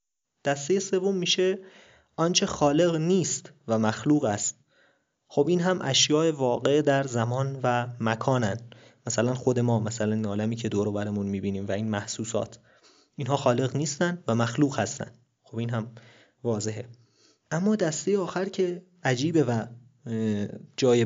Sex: male